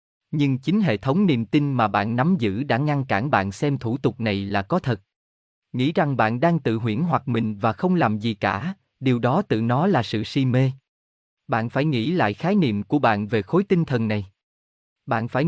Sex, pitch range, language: male, 110-150 Hz, Vietnamese